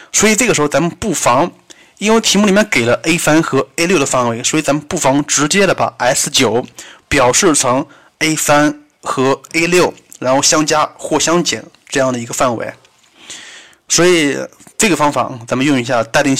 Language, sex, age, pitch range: Chinese, male, 20-39, 125-155 Hz